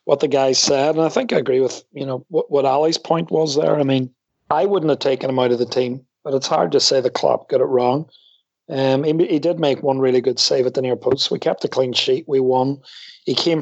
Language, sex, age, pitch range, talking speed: English, male, 40-59, 130-175 Hz, 270 wpm